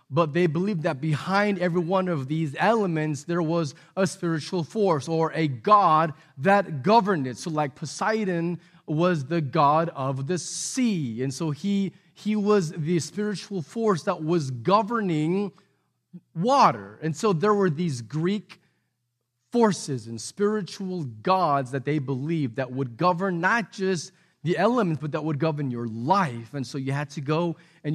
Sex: male